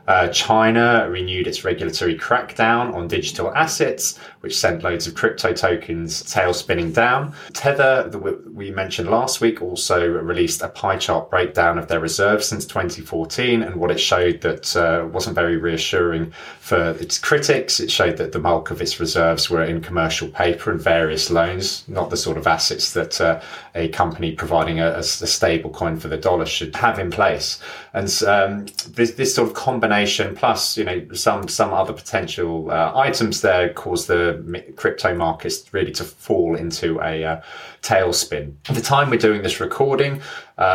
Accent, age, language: British, 30-49, English